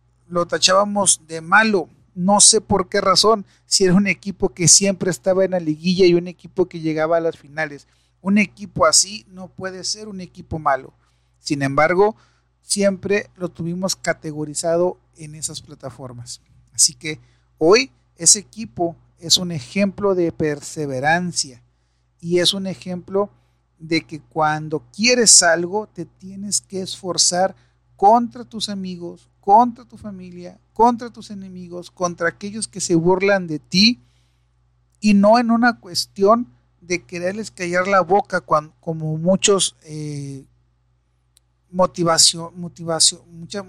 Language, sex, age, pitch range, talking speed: Spanish, male, 40-59, 155-195 Hz, 135 wpm